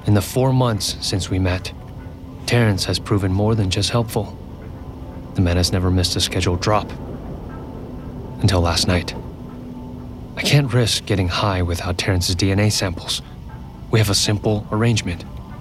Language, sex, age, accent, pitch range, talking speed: English, male, 30-49, American, 90-115 Hz, 150 wpm